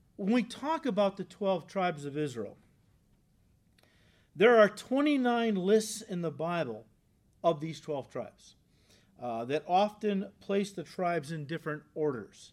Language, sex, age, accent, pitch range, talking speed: English, male, 40-59, American, 150-225 Hz, 140 wpm